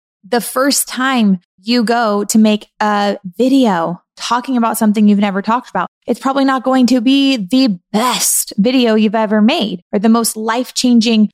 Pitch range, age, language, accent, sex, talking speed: 195-245 Hz, 20-39, English, American, female, 170 wpm